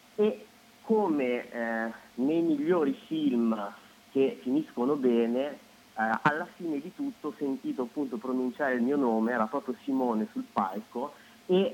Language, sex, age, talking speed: Italian, male, 30-49, 140 wpm